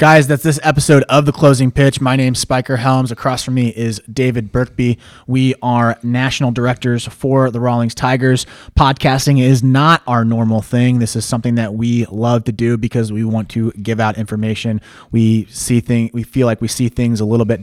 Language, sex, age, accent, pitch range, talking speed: English, male, 20-39, American, 115-135 Hz, 200 wpm